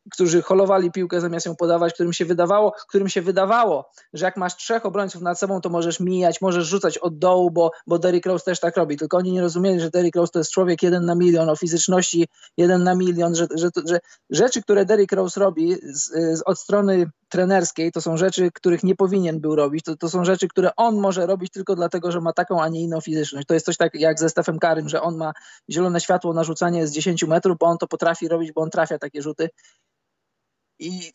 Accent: native